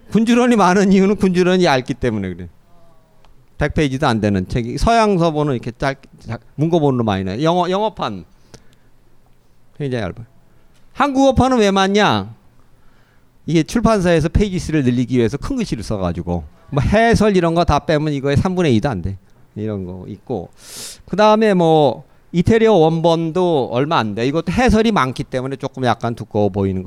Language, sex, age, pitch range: Korean, male, 40-59, 115-190 Hz